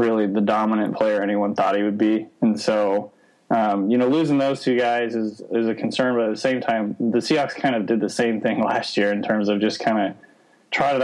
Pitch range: 105-120 Hz